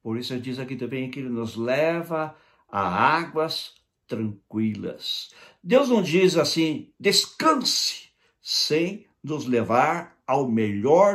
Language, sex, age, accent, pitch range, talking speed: Portuguese, male, 60-79, Brazilian, 110-160 Hz, 125 wpm